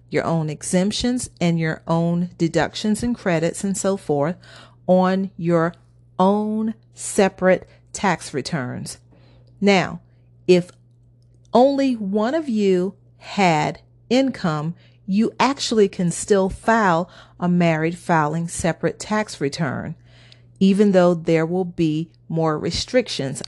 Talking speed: 110 wpm